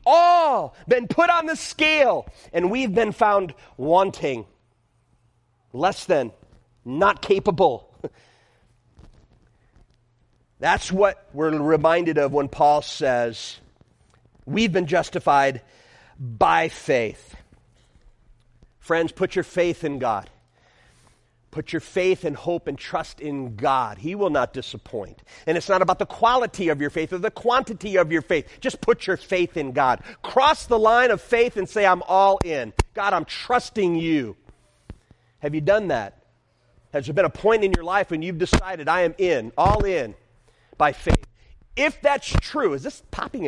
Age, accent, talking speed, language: 40-59, American, 150 wpm, English